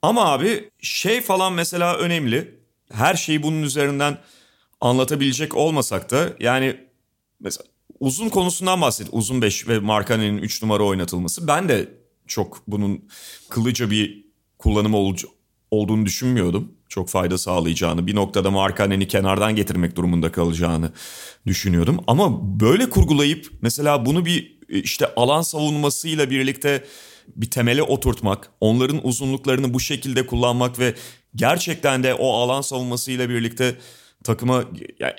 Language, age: Turkish, 40-59